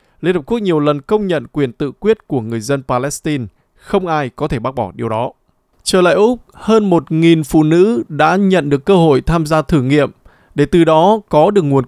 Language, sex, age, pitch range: Vietnamese, male, 20-39, 140-180 Hz